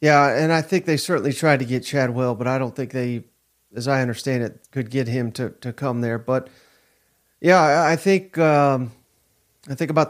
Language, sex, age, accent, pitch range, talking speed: English, male, 40-59, American, 130-160 Hz, 200 wpm